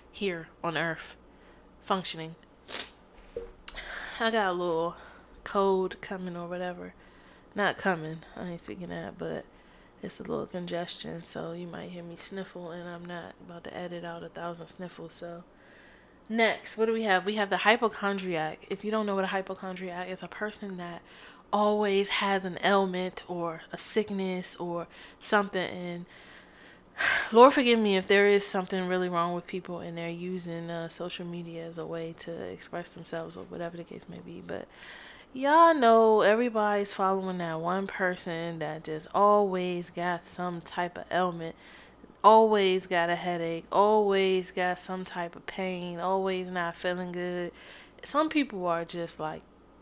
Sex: female